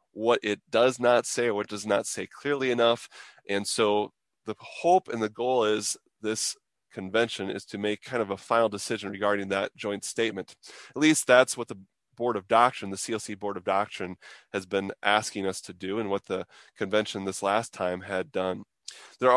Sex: male